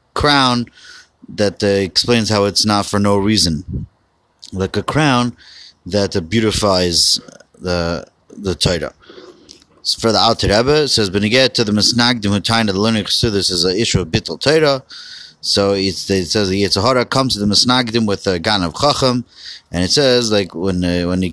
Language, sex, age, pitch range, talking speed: English, male, 30-49, 95-120 Hz, 190 wpm